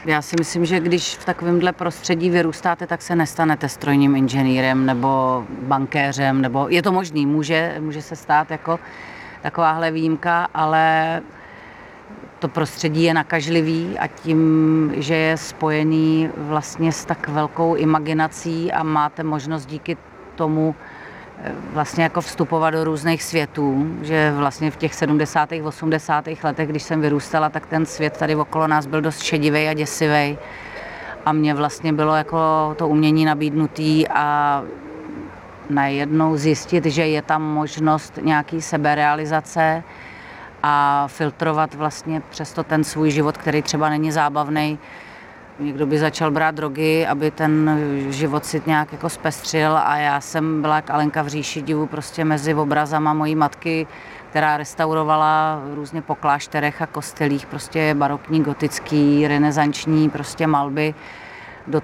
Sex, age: female, 30-49